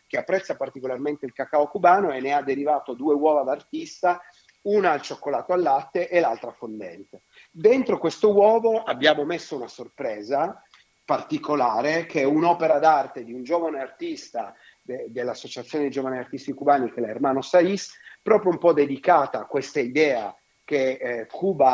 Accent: native